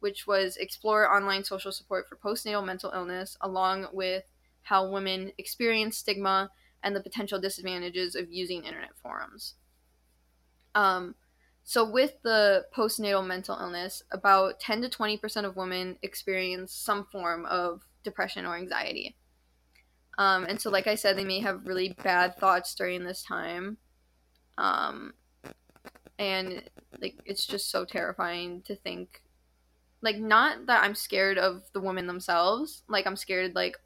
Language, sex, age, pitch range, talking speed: English, female, 10-29, 180-200 Hz, 145 wpm